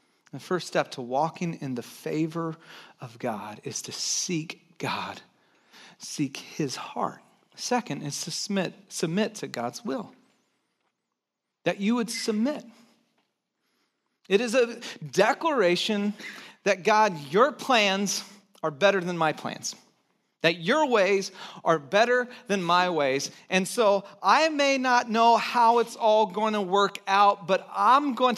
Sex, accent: male, American